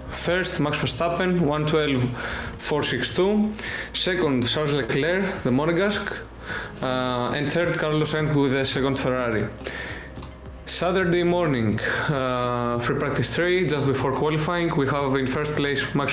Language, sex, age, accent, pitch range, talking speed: Greek, male, 20-39, Spanish, 130-170 Hz, 125 wpm